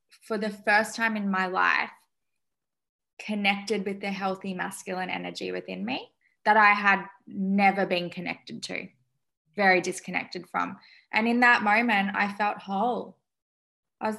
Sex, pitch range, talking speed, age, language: female, 190-220 Hz, 145 wpm, 10-29, English